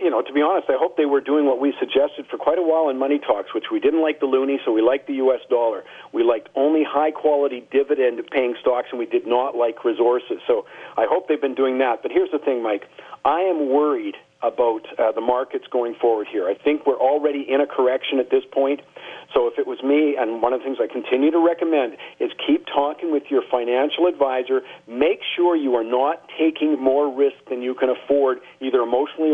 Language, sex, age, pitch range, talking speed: English, male, 50-69, 130-190 Hz, 225 wpm